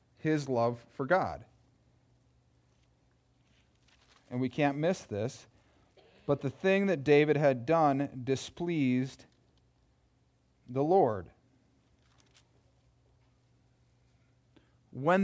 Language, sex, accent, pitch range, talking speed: English, male, American, 125-180 Hz, 80 wpm